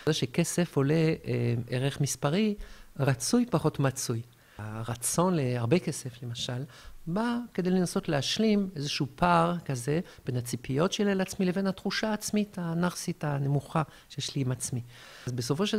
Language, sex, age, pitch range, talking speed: Hebrew, male, 50-69, 125-180 Hz, 135 wpm